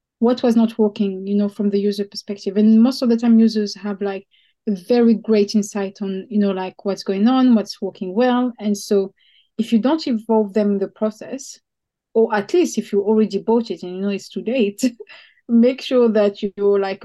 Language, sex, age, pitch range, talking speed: English, female, 30-49, 195-230 Hz, 215 wpm